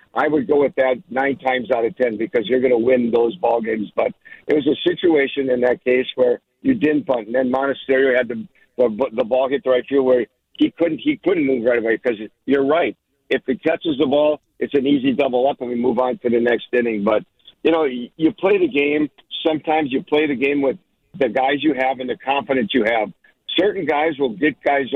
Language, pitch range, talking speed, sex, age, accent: English, 125-145 Hz, 235 wpm, male, 50-69, American